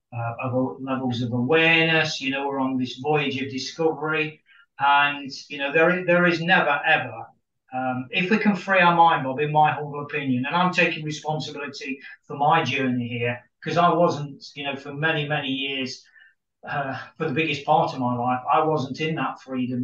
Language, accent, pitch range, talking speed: English, British, 135-170 Hz, 190 wpm